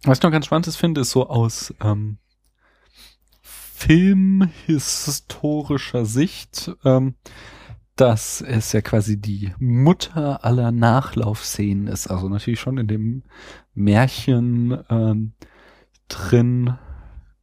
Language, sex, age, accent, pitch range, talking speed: German, male, 30-49, German, 105-125 Hz, 105 wpm